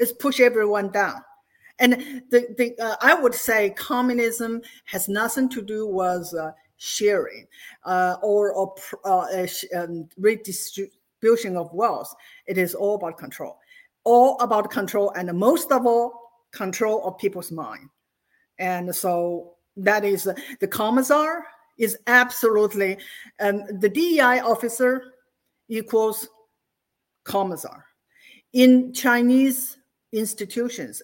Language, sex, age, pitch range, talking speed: English, female, 50-69, 195-250 Hz, 120 wpm